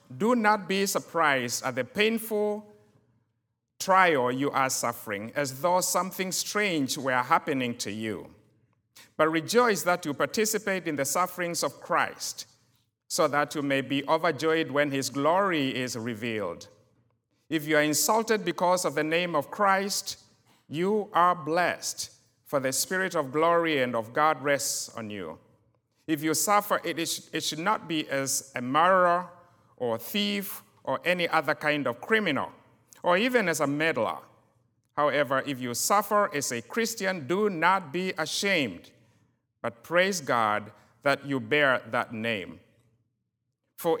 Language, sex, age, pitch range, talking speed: English, male, 50-69, 125-180 Hz, 145 wpm